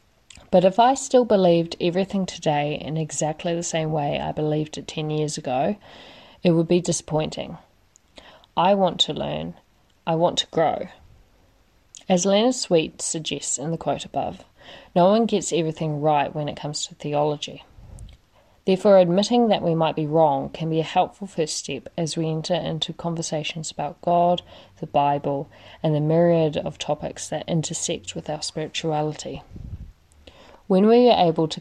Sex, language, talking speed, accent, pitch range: female, English, 160 wpm, Australian, 150-180 Hz